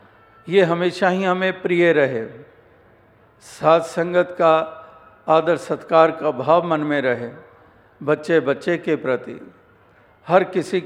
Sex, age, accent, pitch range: male, 50-69, native, 125-170 Hz